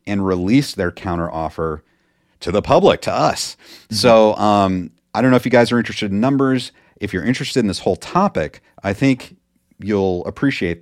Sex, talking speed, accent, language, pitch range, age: male, 185 wpm, American, English, 85-115 Hz, 40-59